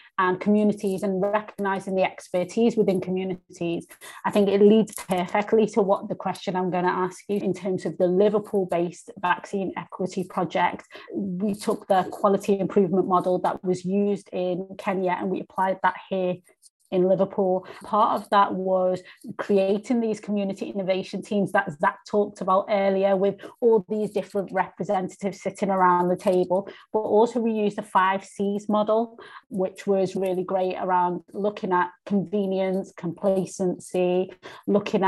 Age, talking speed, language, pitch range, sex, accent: 30-49, 150 wpm, English, 185-210 Hz, female, British